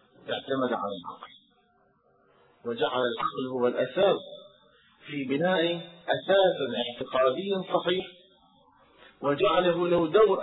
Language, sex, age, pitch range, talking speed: Arabic, male, 40-59, 125-175 Hz, 85 wpm